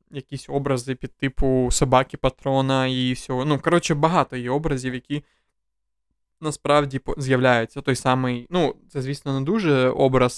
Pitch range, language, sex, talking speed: 125-135 Hz, Ukrainian, male, 140 wpm